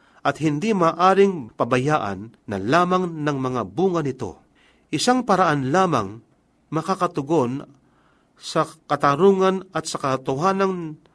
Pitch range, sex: 130-175 Hz, male